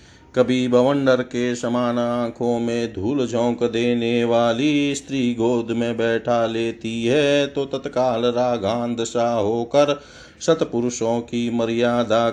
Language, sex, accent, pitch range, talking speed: Hindi, male, native, 115-140 Hz, 115 wpm